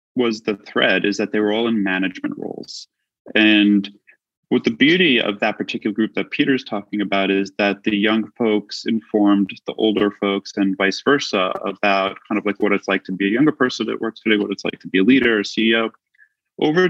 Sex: male